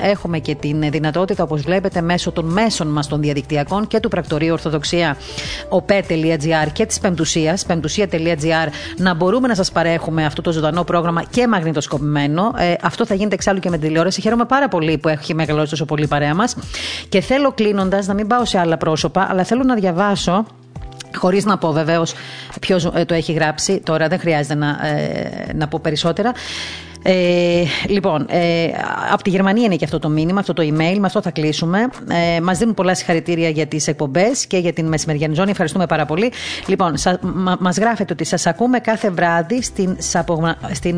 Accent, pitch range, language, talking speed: native, 160-195 Hz, Greek, 180 wpm